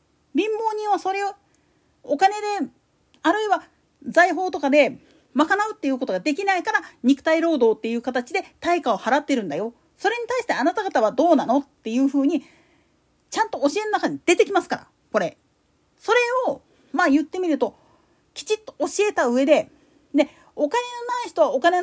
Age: 40-59